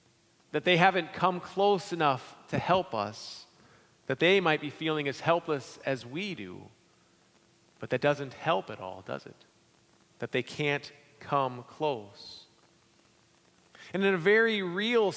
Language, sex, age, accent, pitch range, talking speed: English, male, 40-59, American, 145-205 Hz, 145 wpm